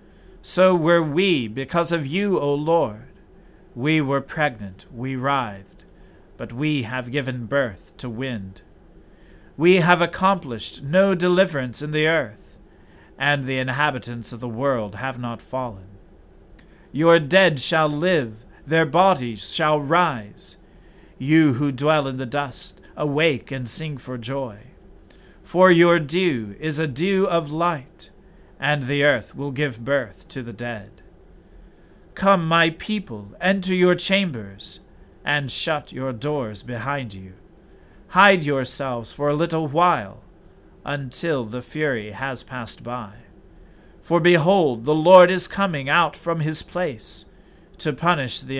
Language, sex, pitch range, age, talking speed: English, male, 125-165 Hz, 40-59, 135 wpm